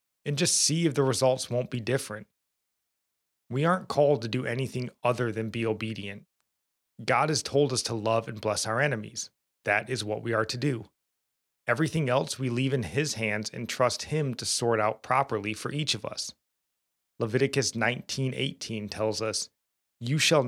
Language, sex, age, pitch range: English, male, 30-49, 105-130 Hz